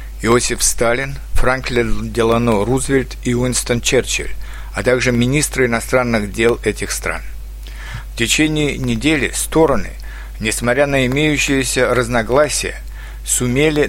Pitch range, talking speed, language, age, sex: 115-135 Hz, 105 wpm, Russian, 50-69, male